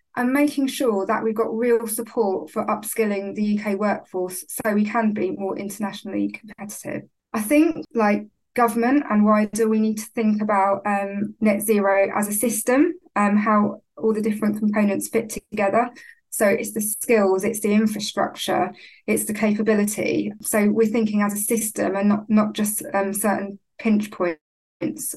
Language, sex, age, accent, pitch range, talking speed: English, female, 20-39, British, 205-225 Hz, 170 wpm